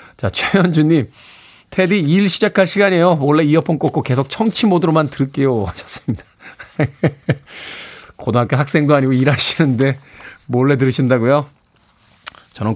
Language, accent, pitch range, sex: Korean, native, 125-190 Hz, male